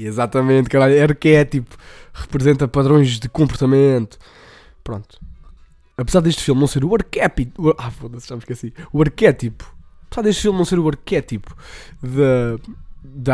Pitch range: 115-145 Hz